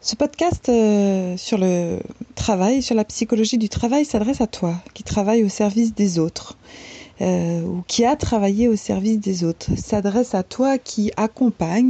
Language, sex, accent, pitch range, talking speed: English, female, French, 175-225 Hz, 170 wpm